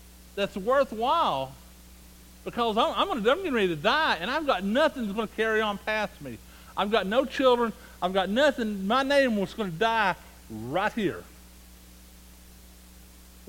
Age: 60-79